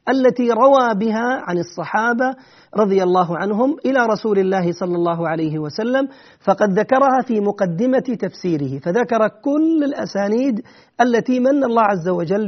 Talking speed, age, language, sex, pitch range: 135 wpm, 40-59, Arabic, male, 180-245 Hz